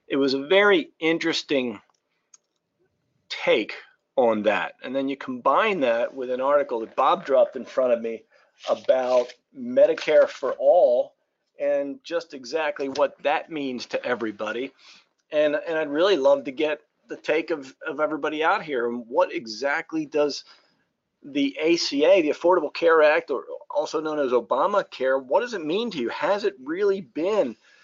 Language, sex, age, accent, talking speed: English, male, 40-59, American, 160 wpm